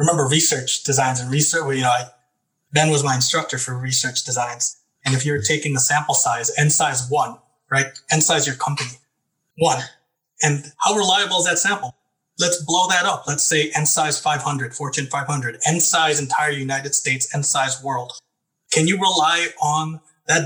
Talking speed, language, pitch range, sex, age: 170 wpm, English, 130-155 Hz, male, 20-39